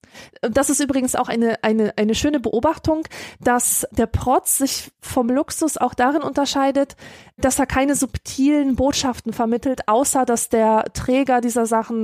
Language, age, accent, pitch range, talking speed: German, 20-39, German, 230-280 Hz, 145 wpm